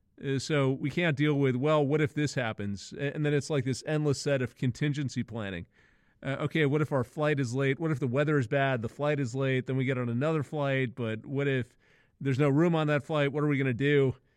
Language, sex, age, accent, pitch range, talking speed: English, male, 30-49, American, 130-150 Hz, 245 wpm